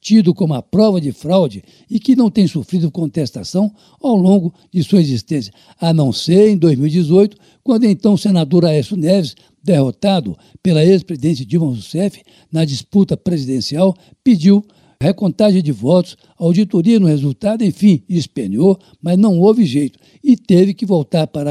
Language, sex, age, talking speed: Portuguese, male, 60-79, 155 wpm